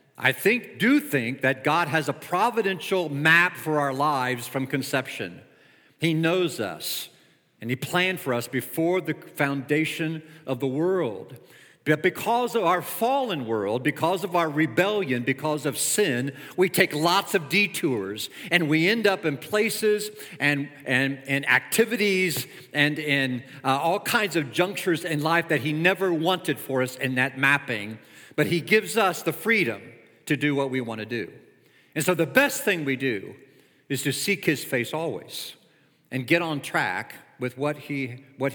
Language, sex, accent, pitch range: English, male, American, 140-195 Hz